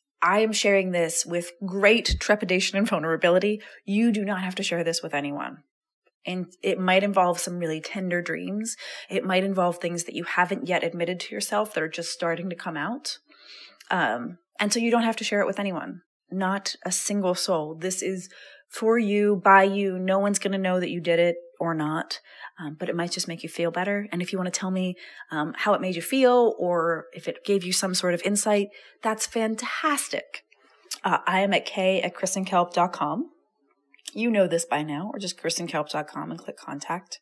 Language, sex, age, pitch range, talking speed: English, female, 30-49, 175-215 Hz, 205 wpm